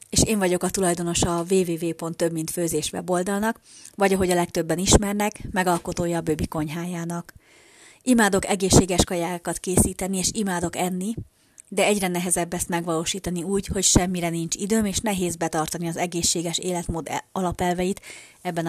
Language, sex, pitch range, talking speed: Hungarian, female, 170-195 Hz, 140 wpm